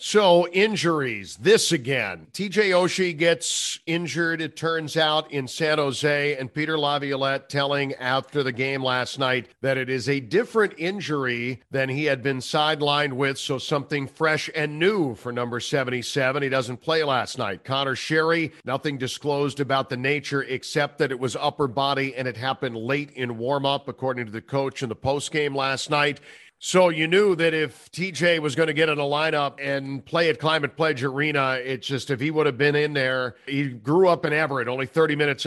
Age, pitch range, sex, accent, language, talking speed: 50-69, 130-155 Hz, male, American, English, 195 wpm